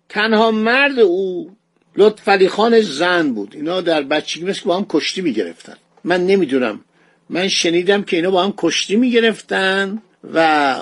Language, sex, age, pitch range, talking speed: Persian, male, 50-69, 165-220 Hz, 160 wpm